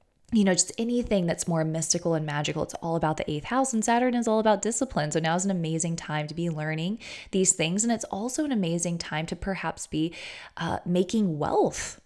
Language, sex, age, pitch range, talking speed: English, female, 20-39, 165-220 Hz, 220 wpm